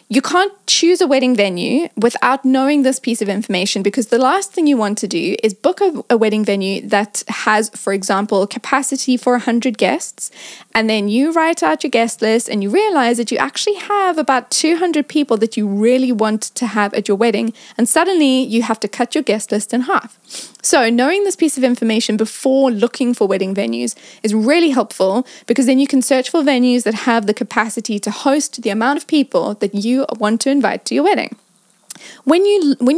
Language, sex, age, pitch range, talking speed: English, female, 10-29, 215-280 Hz, 205 wpm